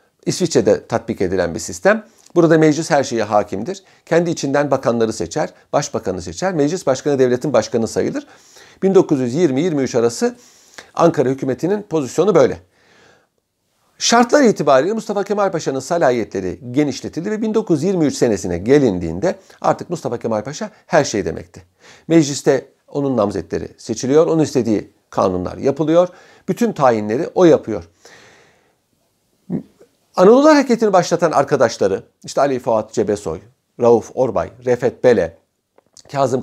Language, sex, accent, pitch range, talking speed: Turkish, male, native, 120-195 Hz, 115 wpm